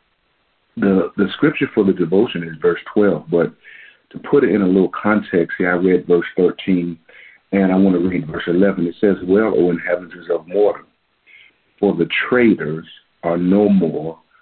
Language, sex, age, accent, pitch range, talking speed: English, male, 50-69, American, 85-100 Hz, 175 wpm